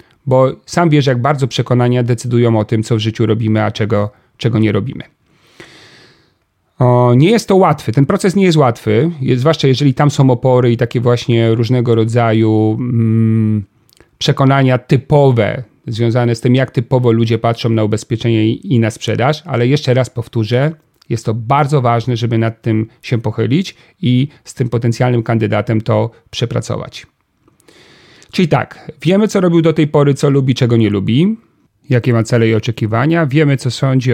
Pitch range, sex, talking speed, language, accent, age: 115-140 Hz, male, 165 wpm, Polish, native, 40-59